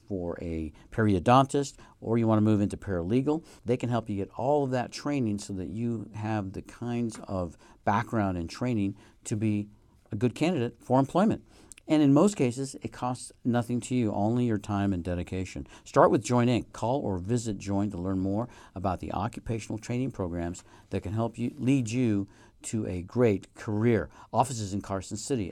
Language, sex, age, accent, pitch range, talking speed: English, male, 50-69, American, 100-125 Hz, 185 wpm